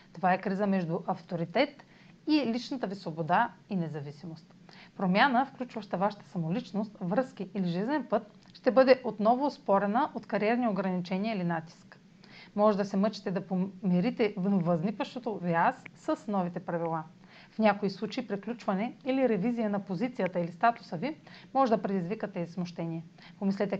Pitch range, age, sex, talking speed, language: 180-230 Hz, 40-59, female, 145 wpm, Bulgarian